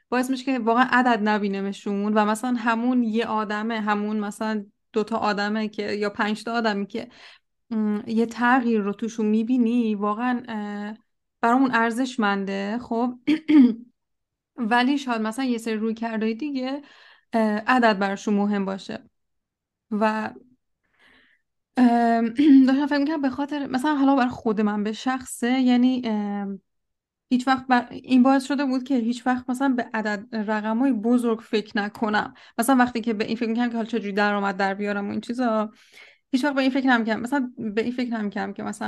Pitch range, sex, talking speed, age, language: 215-255 Hz, female, 160 wpm, 20-39, Persian